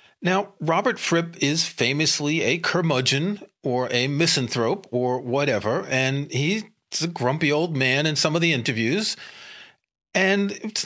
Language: English